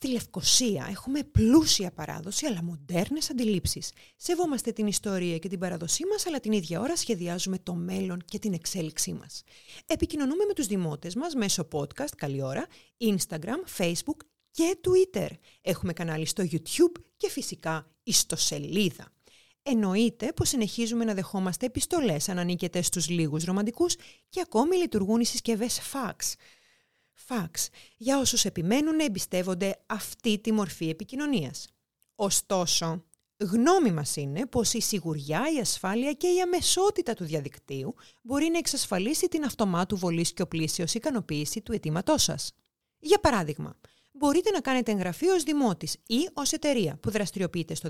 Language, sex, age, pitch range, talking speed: Greek, female, 30-49, 175-275 Hz, 140 wpm